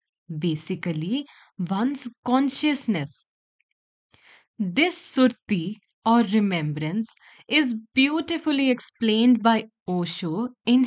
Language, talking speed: English, 70 wpm